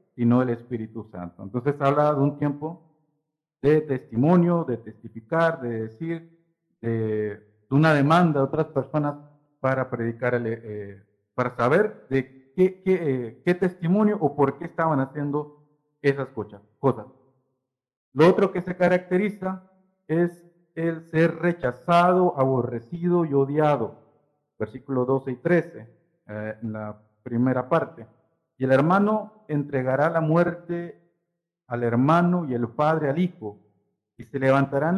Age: 50-69